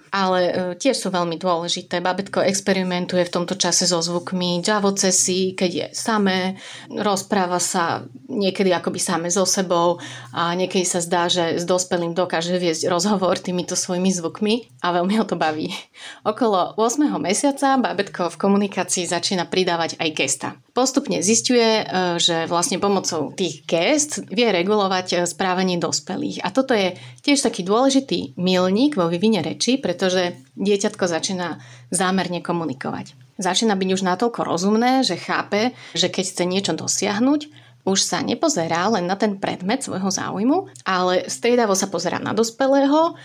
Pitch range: 175-215 Hz